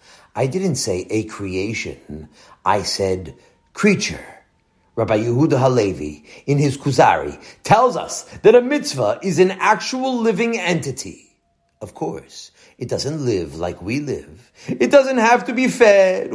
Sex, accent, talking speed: male, American, 140 wpm